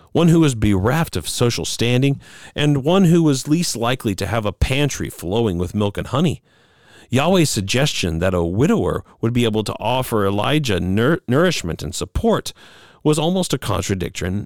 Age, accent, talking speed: 40-59, American, 165 wpm